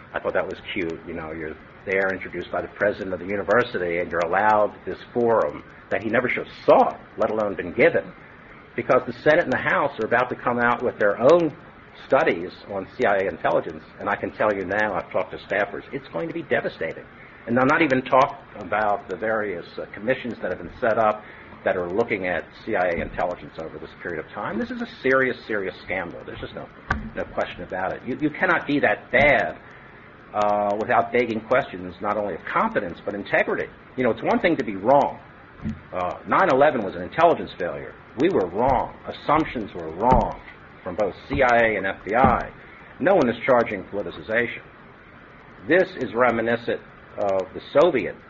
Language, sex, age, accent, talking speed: English, male, 50-69, American, 195 wpm